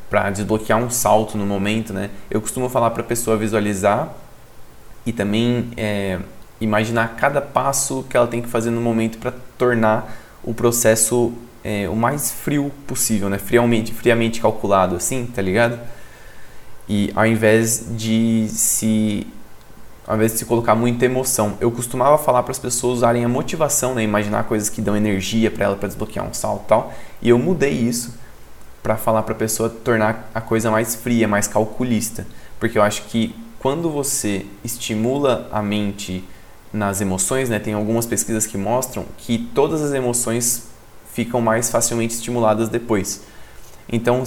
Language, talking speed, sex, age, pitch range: Portuguese, 165 wpm, male, 20-39, 105-120 Hz